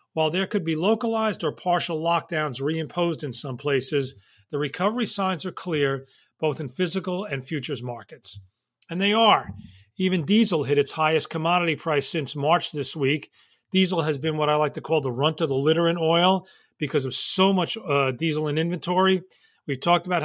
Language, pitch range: English, 145-180 Hz